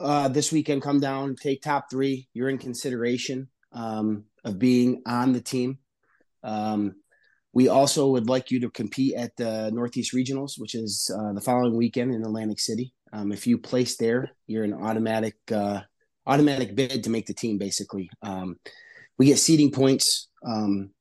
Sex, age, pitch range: male, 30-49, 110-130 Hz